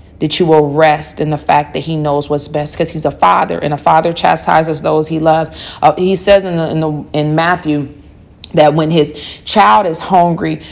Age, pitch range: 40-59, 150-190 Hz